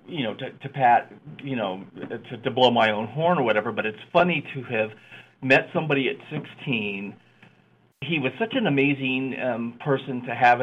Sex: male